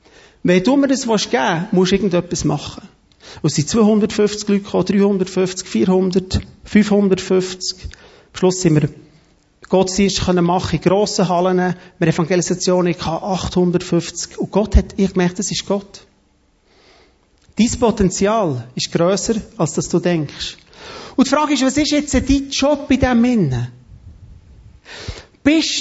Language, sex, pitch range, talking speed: German, male, 170-245 Hz, 140 wpm